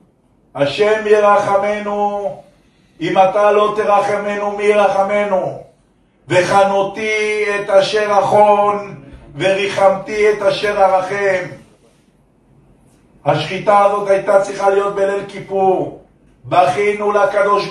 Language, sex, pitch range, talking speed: Hebrew, male, 195-215 Hz, 85 wpm